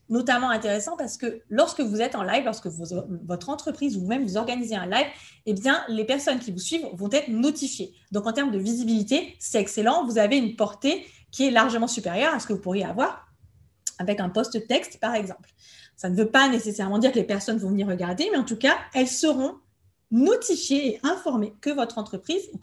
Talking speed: 210 wpm